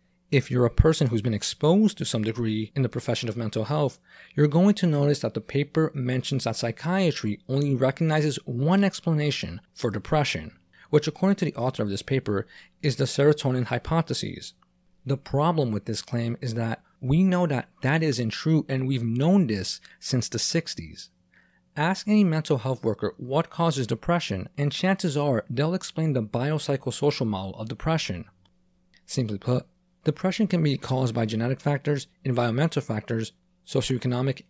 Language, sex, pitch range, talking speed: English, male, 115-160 Hz, 165 wpm